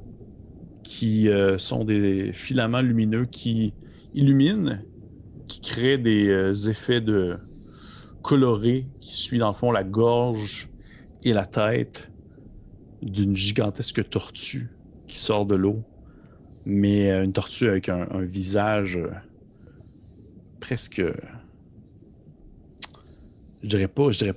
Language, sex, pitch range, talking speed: French, male, 95-115 Hz, 105 wpm